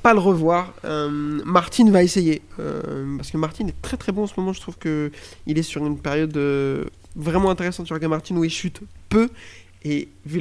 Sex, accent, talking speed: male, French, 210 wpm